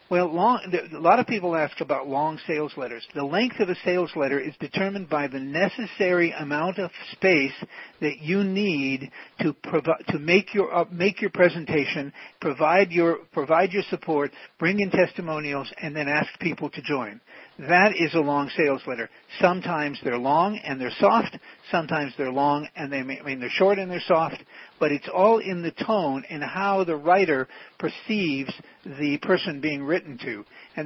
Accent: American